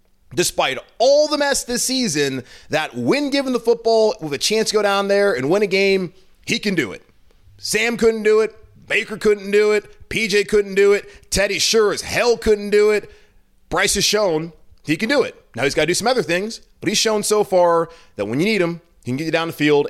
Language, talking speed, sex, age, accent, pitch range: English, 230 wpm, male, 30-49, American, 145-205 Hz